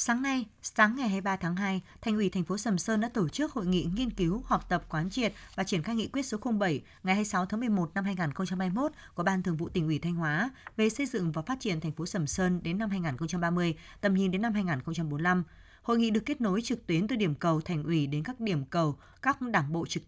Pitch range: 165-220 Hz